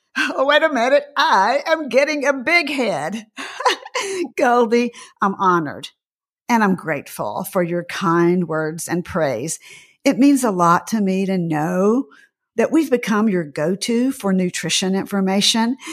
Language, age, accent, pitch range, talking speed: English, 50-69, American, 180-265 Hz, 145 wpm